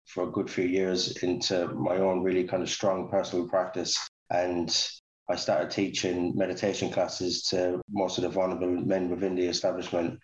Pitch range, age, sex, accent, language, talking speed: 90-95 Hz, 20-39, male, British, English, 170 wpm